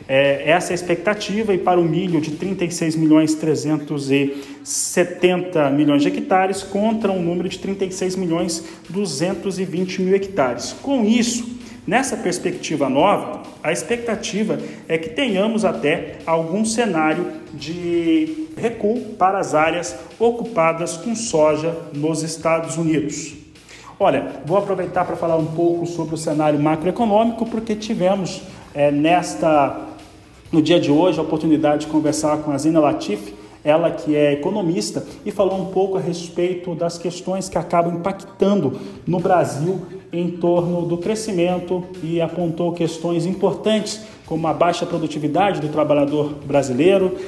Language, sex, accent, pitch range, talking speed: Portuguese, male, Brazilian, 155-190 Hz, 135 wpm